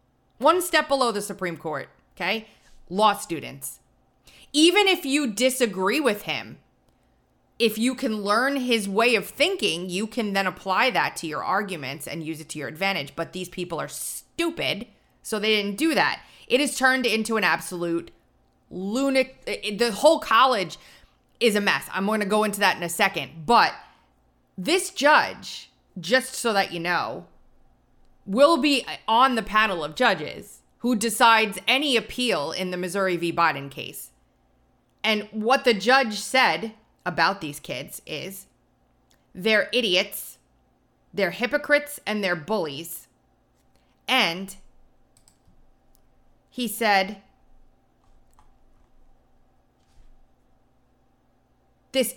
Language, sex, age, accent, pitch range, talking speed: English, female, 30-49, American, 180-250 Hz, 130 wpm